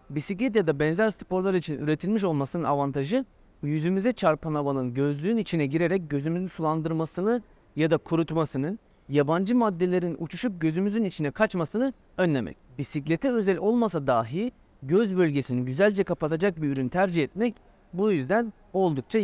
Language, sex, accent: Turkish, male, native